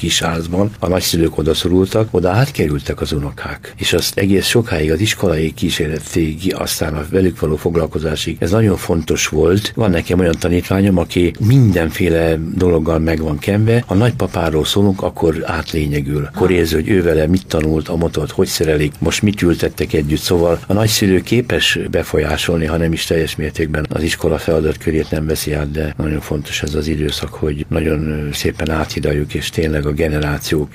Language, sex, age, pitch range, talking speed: Hungarian, male, 60-79, 75-90 Hz, 165 wpm